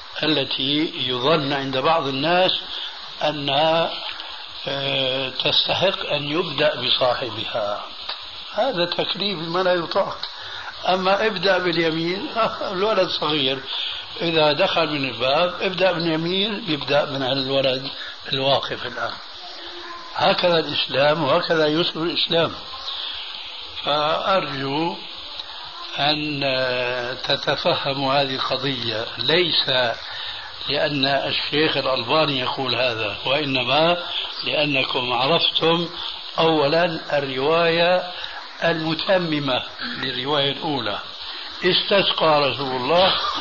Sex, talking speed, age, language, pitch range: male, 80 wpm, 60-79, Arabic, 135-170 Hz